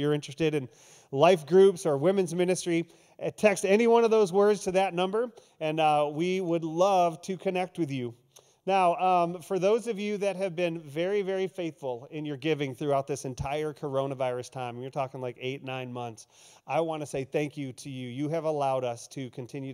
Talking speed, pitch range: 205 wpm, 130-165 Hz